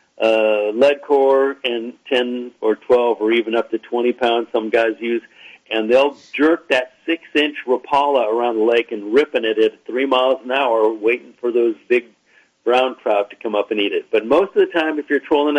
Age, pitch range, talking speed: 50-69, 115-135 Hz, 205 wpm